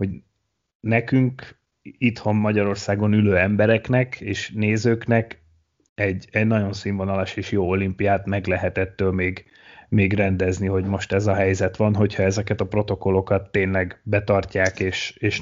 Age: 30-49